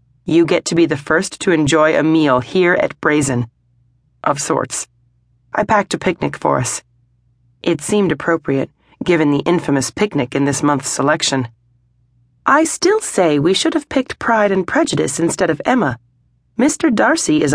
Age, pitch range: 30-49, 125-180 Hz